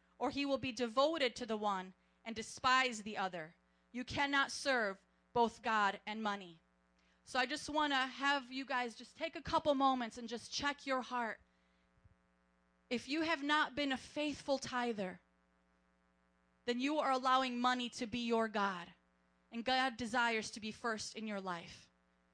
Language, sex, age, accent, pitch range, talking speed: English, female, 30-49, American, 195-265 Hz, 170 wpm